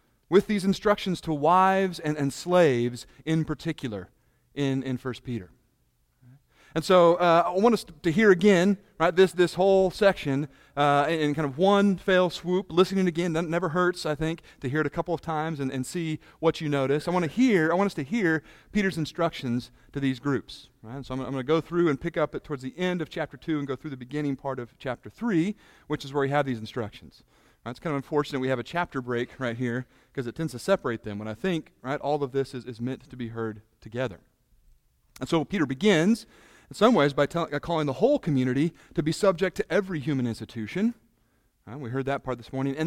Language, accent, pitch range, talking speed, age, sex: English, American, 130-175 Hz, 225 wpm, 40-59, male